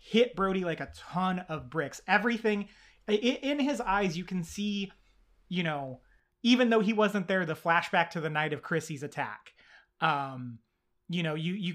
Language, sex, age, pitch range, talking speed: English, male, 30-49, 150-195 Hz, 175 wpm